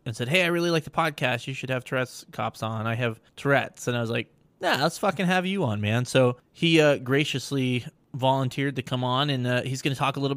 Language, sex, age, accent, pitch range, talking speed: English, male, 20-39, American, 115-140 Hz, 255 wpm